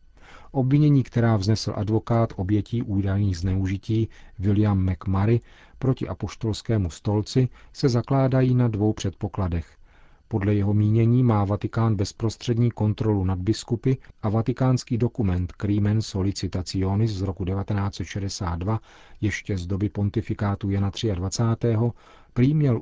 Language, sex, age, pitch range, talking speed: Czech, male, 40-59, 95-115 Hz, 110 wpm